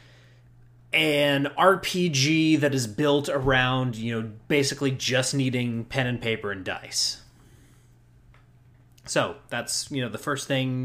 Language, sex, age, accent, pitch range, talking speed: English, male, 30-49, American, 120-135 Hz, 125 wpm